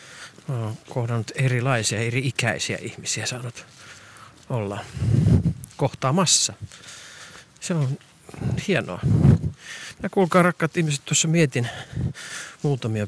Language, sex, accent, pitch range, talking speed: Finnish, male, native, 120-160 Hz, 85 wpm